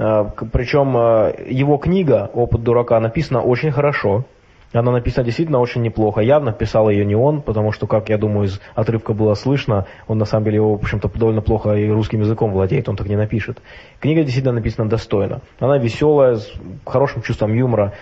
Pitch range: 110-130 Hz